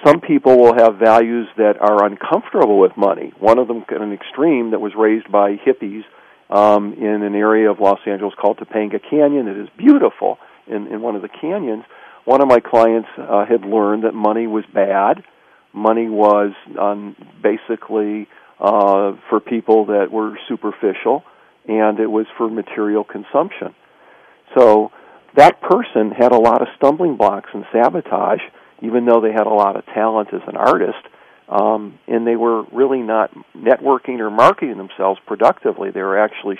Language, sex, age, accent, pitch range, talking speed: English, male, 50-69, American, 105-115 Hz, 170 wpm